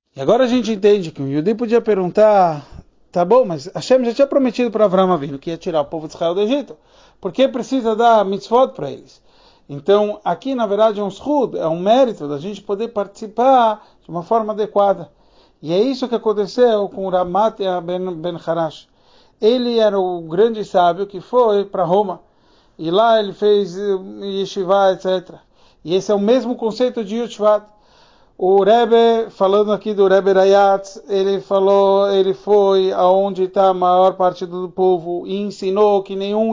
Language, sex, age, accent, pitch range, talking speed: Portuguese, male, 40-59, Brazilian, 190-230 Hz, 180 wpm